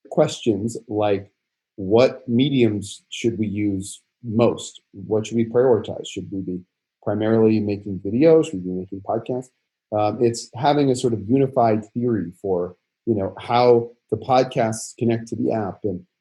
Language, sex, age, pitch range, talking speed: English, male, 40-59, 105-125 Hz, 155 wpm